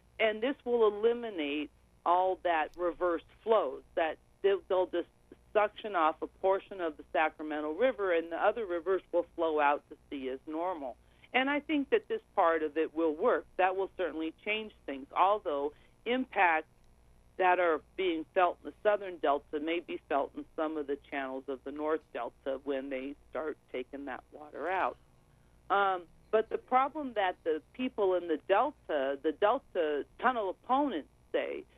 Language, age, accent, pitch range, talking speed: English, 50-69, American, 155-215 Hz, 165 wpm